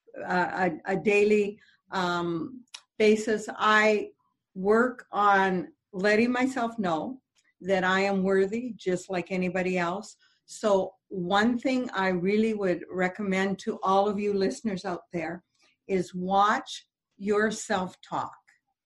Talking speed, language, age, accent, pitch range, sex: 120 wpm, English, 50-69, American, 180-220 Hz, female